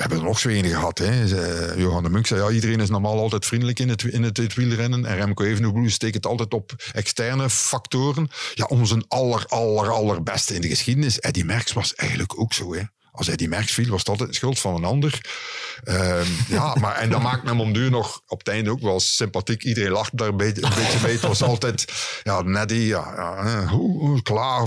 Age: 50-69